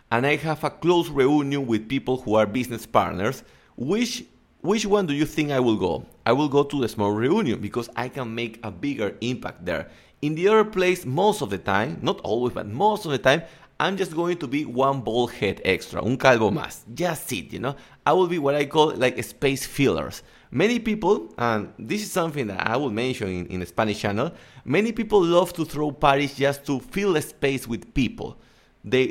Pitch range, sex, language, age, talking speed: 115-155 Hz, male, English, 30-49, 220 wpm